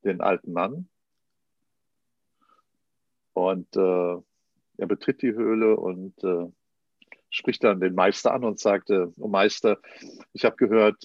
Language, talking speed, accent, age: German, 130 wpm, German, 50-69